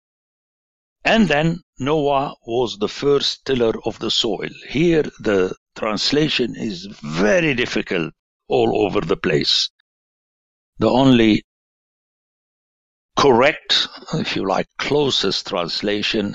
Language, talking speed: English, 105 wpm